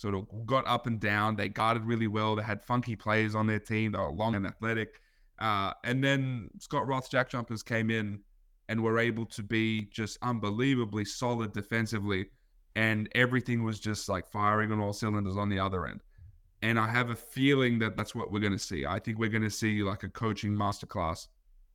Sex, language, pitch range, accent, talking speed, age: male, English, 105-120 Hz, Australian, 205 wpm, 20-39